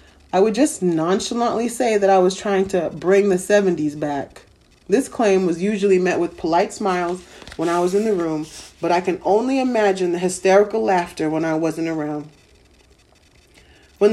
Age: 30-49